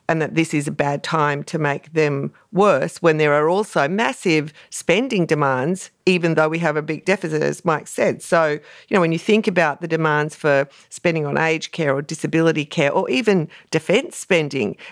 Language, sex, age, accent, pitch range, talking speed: English, female, 50-69, Australian, 145-170 Hz, 195 wpm